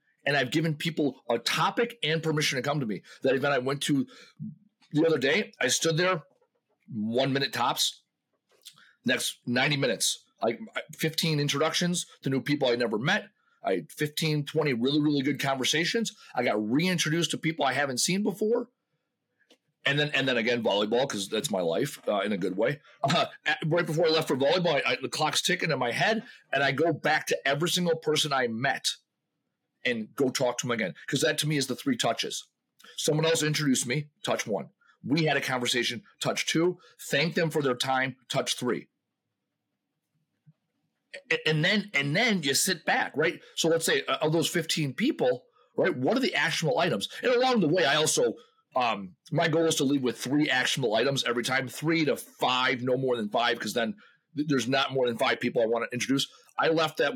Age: 40-59